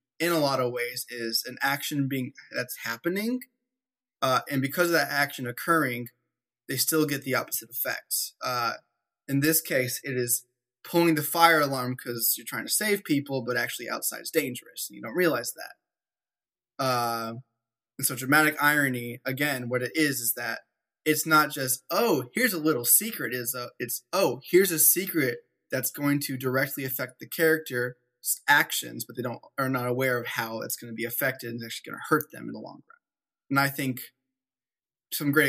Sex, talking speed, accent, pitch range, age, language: male, 190 wpm, American, 125-155 Hz, 20-39, English